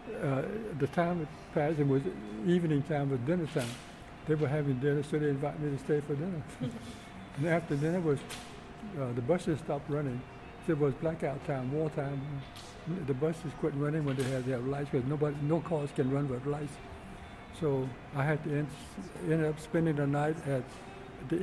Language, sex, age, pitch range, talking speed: English, male, 60-79, 135-155 Hz, 195 wpm